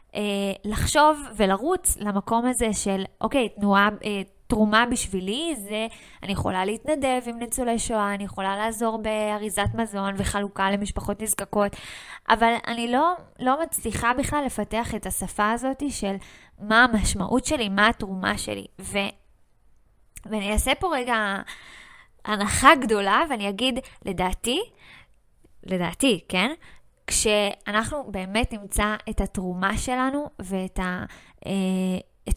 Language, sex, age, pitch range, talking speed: Hebrew, female, 20-39, 200-240 Hz, 115 wpm